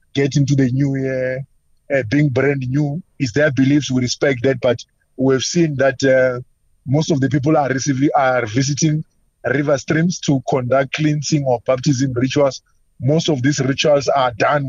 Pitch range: 125-145 Hz